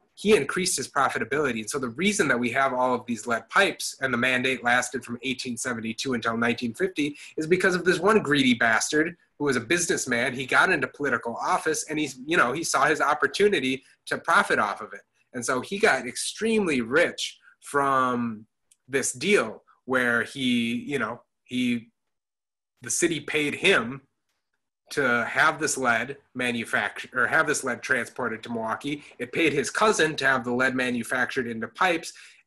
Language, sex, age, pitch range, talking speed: English, male, 30-49, 120-155 Hz, 175 wpm